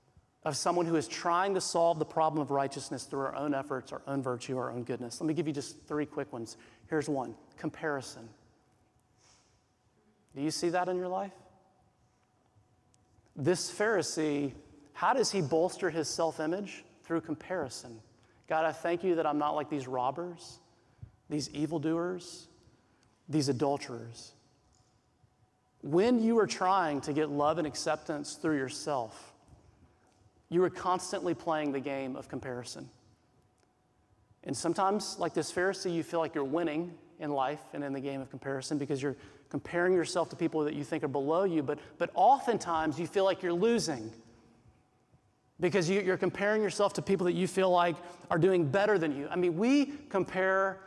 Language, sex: English, male